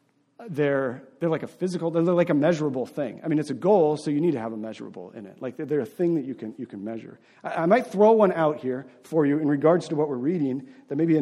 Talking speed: 285 wpm